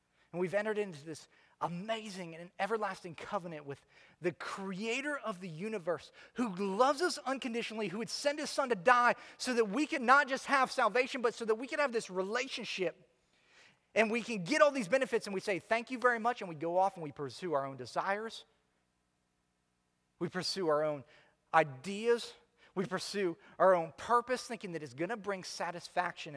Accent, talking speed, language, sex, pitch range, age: American, 190 wpm, English, male, 165-220 Hz, 30-49